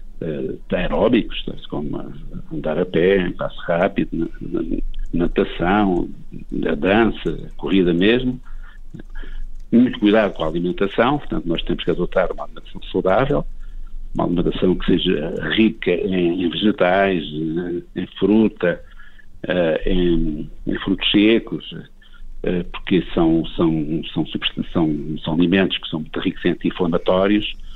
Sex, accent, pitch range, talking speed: male, Brazilian, 90-105 Hz, 130 wpm